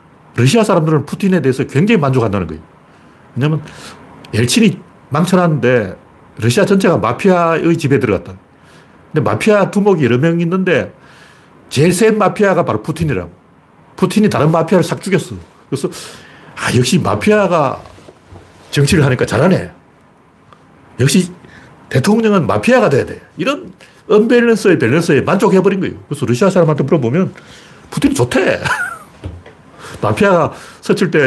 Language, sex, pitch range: Korean, male, 135-185 Hz